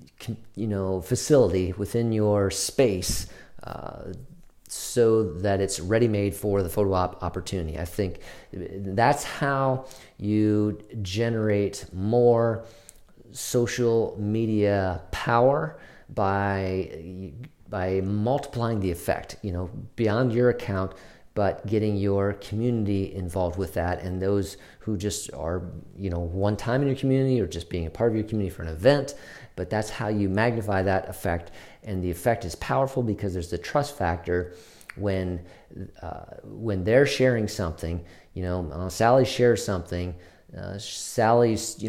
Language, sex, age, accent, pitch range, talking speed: English, male, 40-59, American, 90-115 Hz, 140 wpm